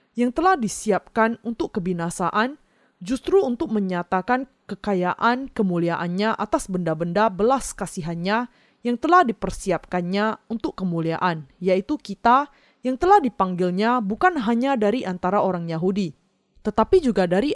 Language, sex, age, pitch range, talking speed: Indonesian, female, 20-39, 180-240 Hz, 115 wpm